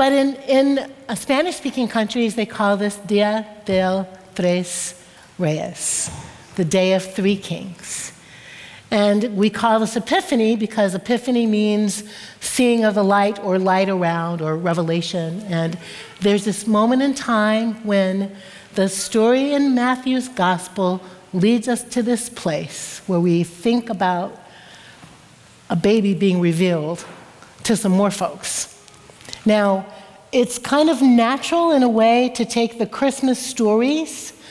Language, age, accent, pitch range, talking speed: English, 60-79, American, 195-230 Hz, 130 wpm